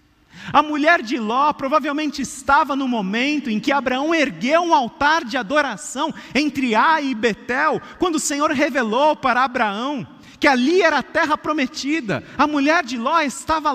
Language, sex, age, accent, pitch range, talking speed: Portuguese, male, 40-59, Brazilian, 240-310 Hz, 165 wpm